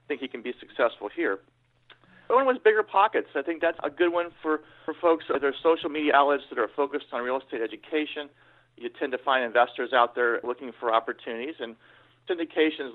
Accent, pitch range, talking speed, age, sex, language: American, 130-170 Hz, 205 wpm, 40-59, male, English